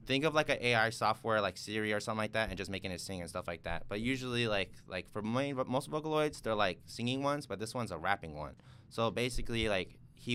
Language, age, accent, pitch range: English, 20-39, American, 85-115 Hz